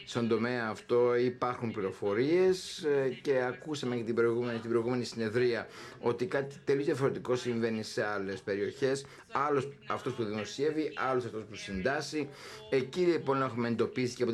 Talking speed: 140 wpm